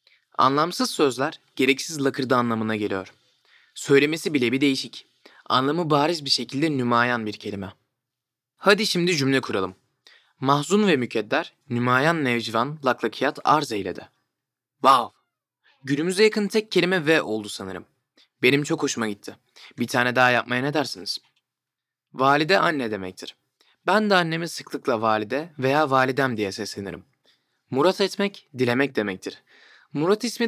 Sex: male